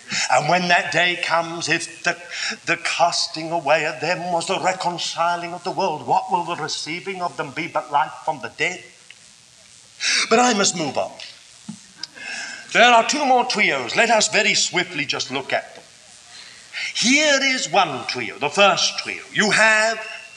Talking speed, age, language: 170 wpm, 50-69, English